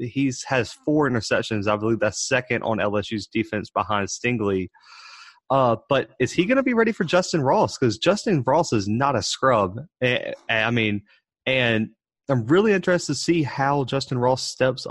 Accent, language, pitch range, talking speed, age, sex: American, English, 110-135 Hz, 175 wpm, 30-49, male